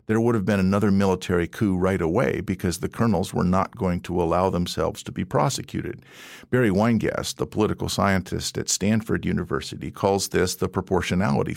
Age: 50-69